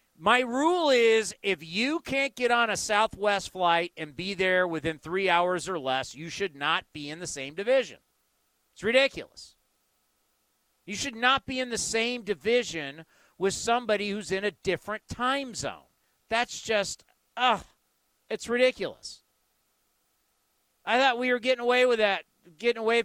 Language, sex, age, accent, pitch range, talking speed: English, male, 40-59, American, 170-225 Hz, 155 wpm